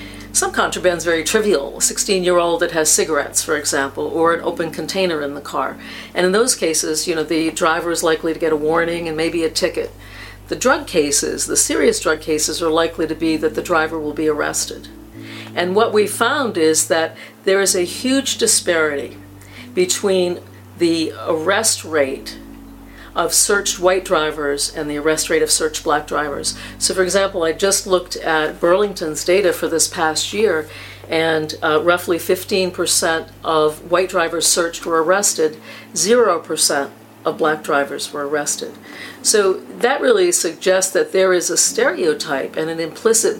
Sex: female